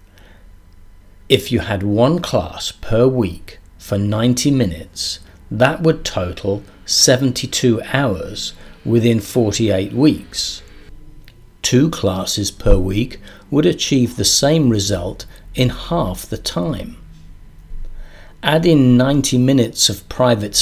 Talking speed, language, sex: 110 wpm, English, male